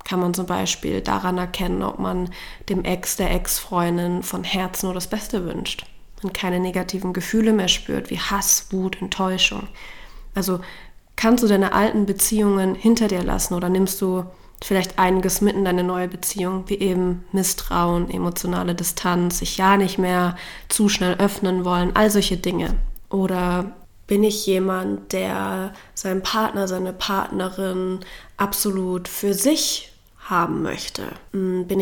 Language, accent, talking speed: German, German, 145 wpm